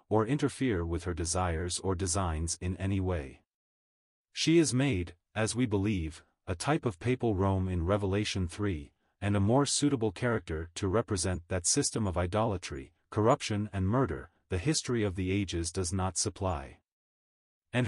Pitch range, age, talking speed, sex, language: 90-115 Hz, 30-49, 160 wpm, male, English